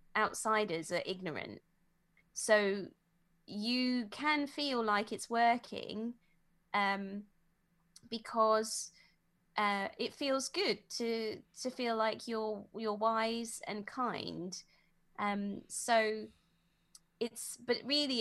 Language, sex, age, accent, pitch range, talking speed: English, female, 20-39, British, 175-230 Hz, 100 wpm